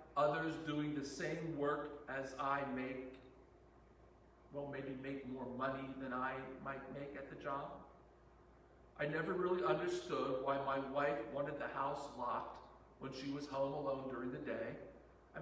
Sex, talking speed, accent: male, 150 wpm, American